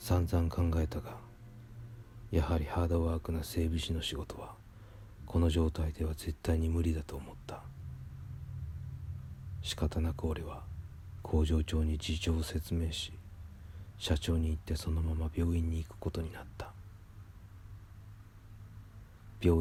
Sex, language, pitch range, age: male, Japanese, 80-95 Hz, 40-59